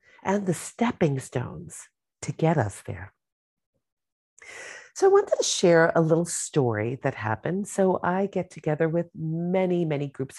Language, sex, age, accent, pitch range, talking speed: English, female, 40-59, American, 140-210 Hz, 150 wpm